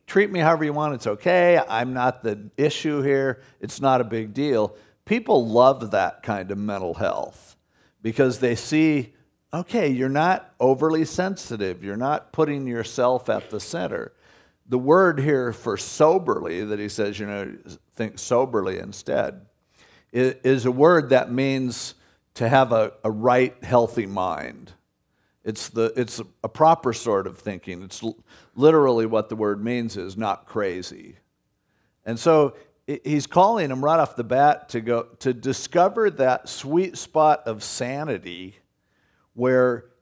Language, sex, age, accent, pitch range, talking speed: English, male, 50-69, American, 115-150 Hz, 145 wpm